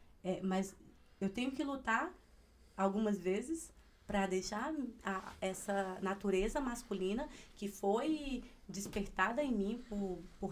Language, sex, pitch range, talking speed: Portuguese, female, 175-235 Hz, 110 wpm